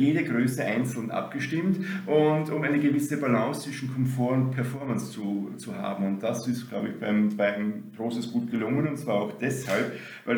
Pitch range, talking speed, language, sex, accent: 125-150 Hz, 180 wpm, German, male, German